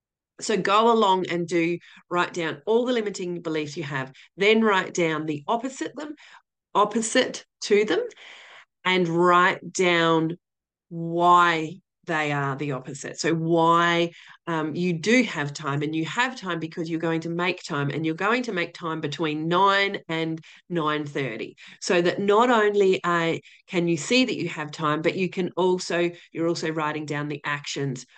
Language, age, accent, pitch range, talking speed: English, 30-49, Australian, 155-200 Hz, 170 wpm